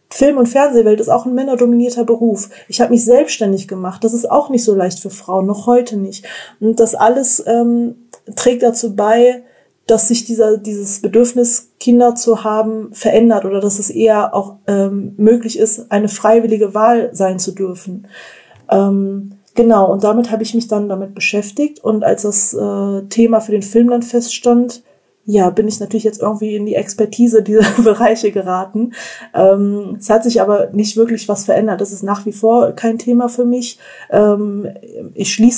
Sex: female